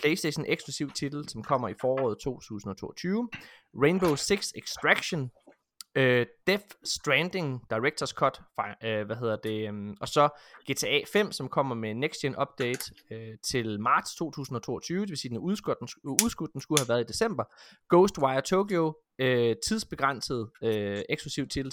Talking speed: 160 wpm